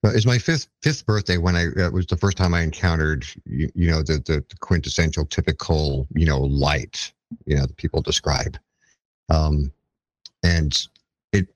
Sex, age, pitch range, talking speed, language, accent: male, 50-69, 75-95 Hz, 180 wpm, English, American